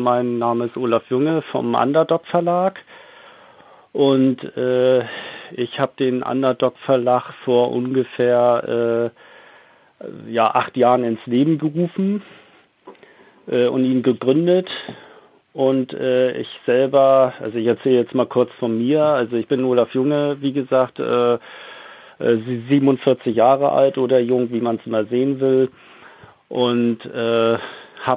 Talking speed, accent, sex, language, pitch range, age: 130 wpm, German, male, German, 115-130 Hz, 40-59